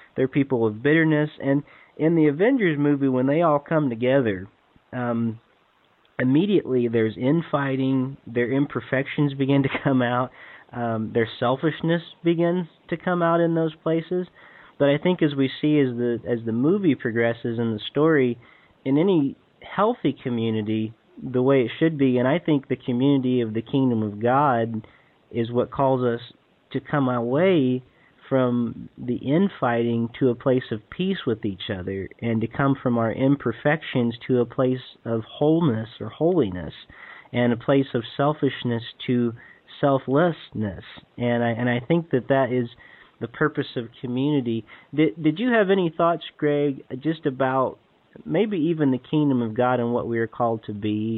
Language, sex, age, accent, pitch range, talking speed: English, male, 40-59, American, 115-145 Hz, 165 wpm